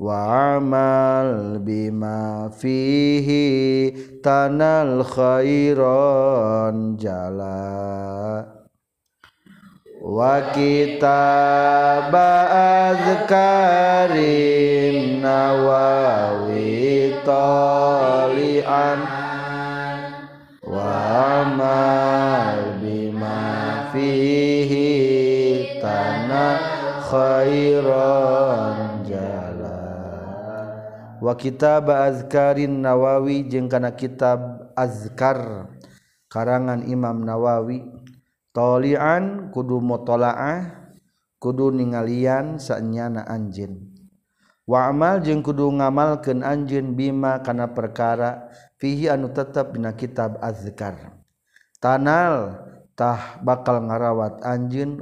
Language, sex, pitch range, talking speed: Indonesian, male, 110-140 Hz, 55 wpm